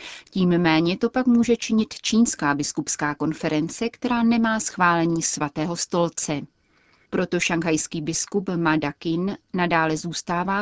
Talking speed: 115 wpm